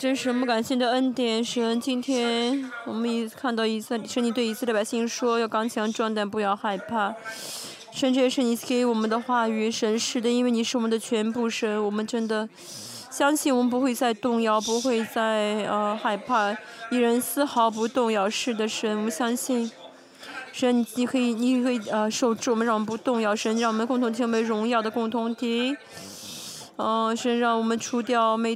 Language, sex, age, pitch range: Chinese, female, 20-39, 220-250 Hz